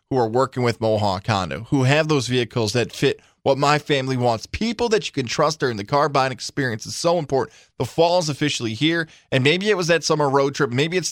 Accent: American